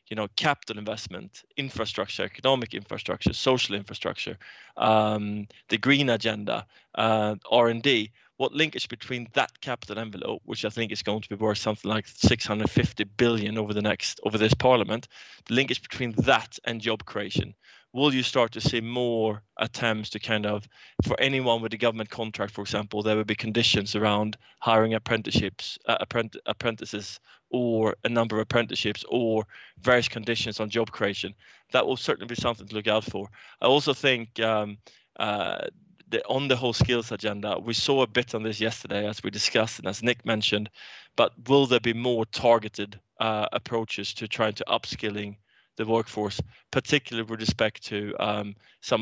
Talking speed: 170 wpm